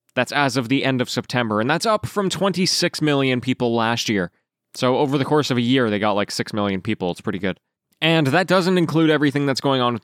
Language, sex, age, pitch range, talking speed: English, male, 20-39, 115-165 Hz, 245 wpm